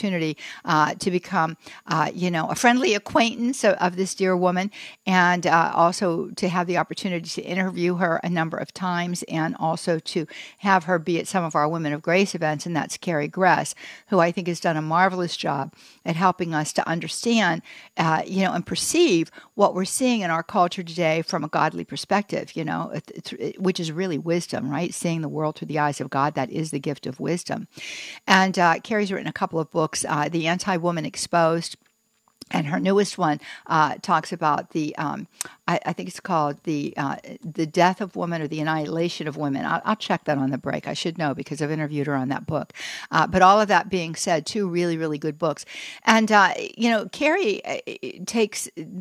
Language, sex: English, female